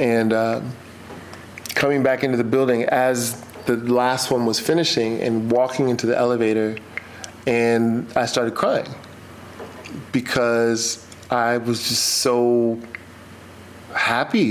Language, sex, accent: English, male, American